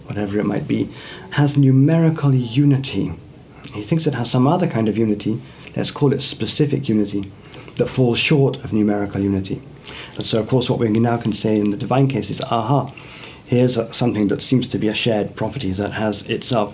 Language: English